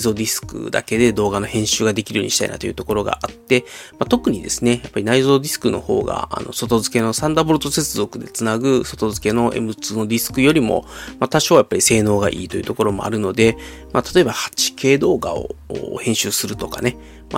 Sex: male